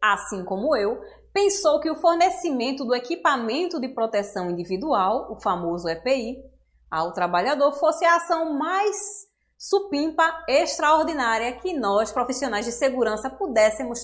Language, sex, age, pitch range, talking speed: Portuguese, female, 20-39, 210-330 Hz, 125 wpm